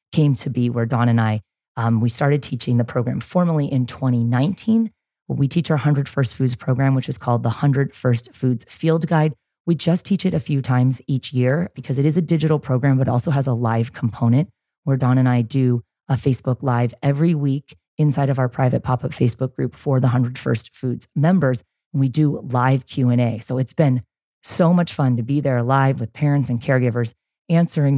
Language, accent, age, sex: English, American, 30-49, female